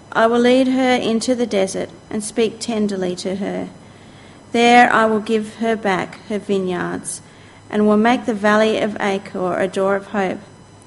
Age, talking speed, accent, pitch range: 40-59, 170 wpm, Australian, 200-235 Hz